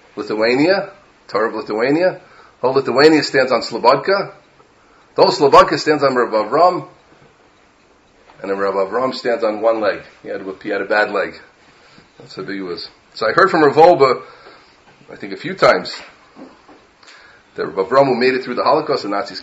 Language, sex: English, male